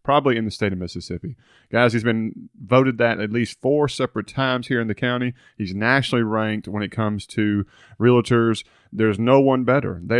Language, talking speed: English, 195 wpm